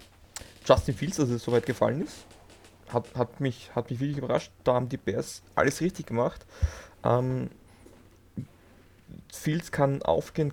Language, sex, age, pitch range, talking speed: German, male, 20-39, 110-135 Hz, 150 wpm